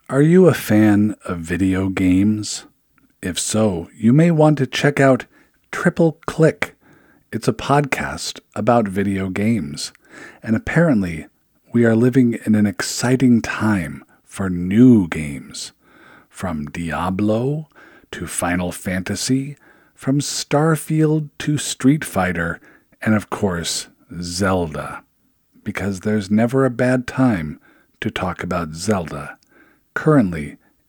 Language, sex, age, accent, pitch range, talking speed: English, male, 50-69, American, 95-140 Hz, 115 wpm